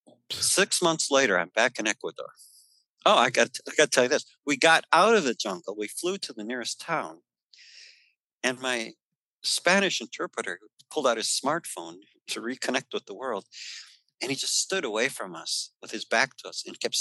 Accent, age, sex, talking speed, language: American, 50-69, male, 190 wpm, English